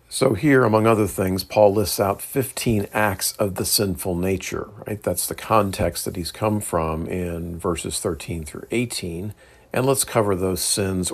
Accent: American